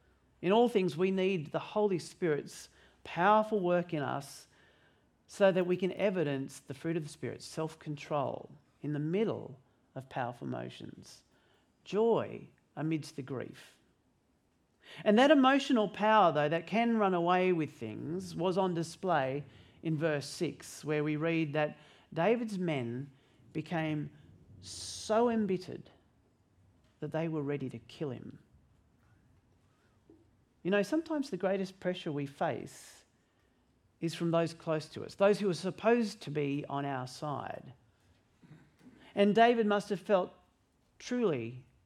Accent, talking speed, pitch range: Australian, 135 wpm, 140-195 Hz